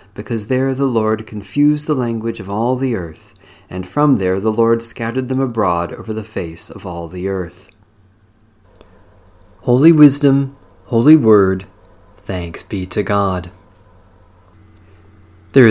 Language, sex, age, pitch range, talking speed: English, male, 40-59, 95-125 Hz, 135 wpm